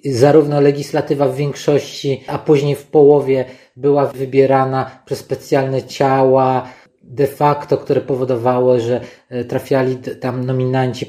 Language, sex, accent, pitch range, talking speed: Polish, male, native, 130-155 Hz, 115 wpm